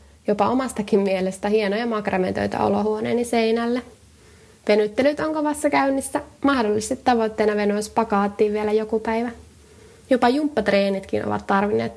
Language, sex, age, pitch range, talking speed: Finnish, female, 20-39, 205-235 Hz, 110 wpm